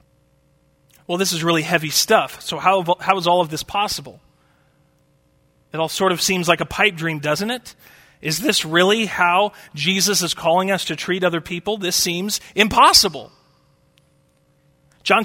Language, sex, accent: English, male, American